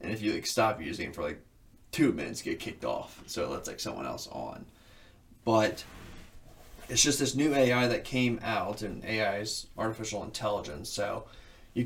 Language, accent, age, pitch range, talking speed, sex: English, American, 20-39, 105-120 Hz, 185 wpm, male